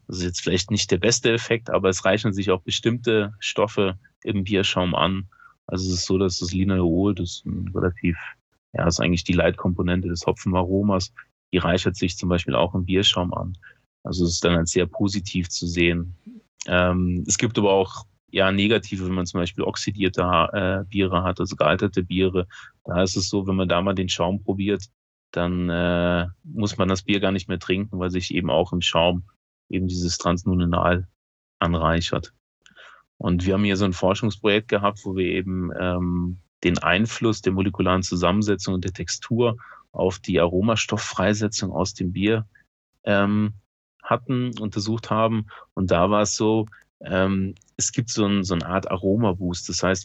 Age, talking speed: 30-49, 180 wpm